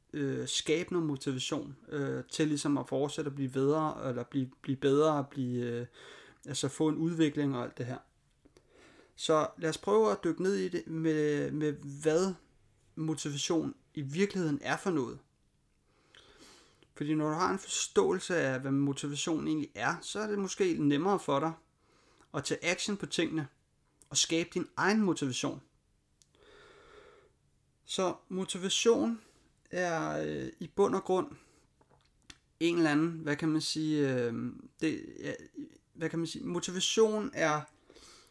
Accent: native